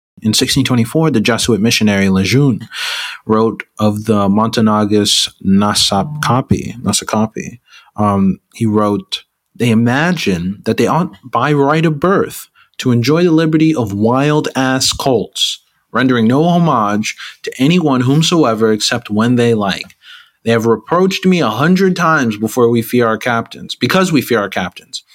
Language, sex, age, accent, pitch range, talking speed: English, male, 30-49, American, 110-155 Hz, 135 wpm